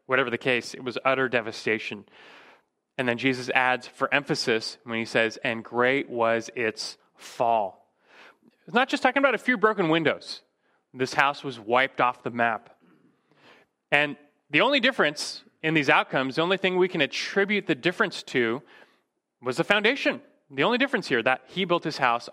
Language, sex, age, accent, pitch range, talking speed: English, male, 30-49, American, 130-180 Hz, 175 wpm